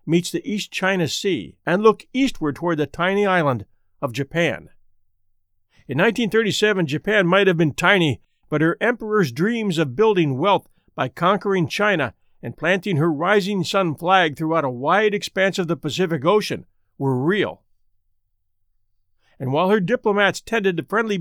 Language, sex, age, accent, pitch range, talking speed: English, male, 50-69, American, 145-200 Hz, 155 wpm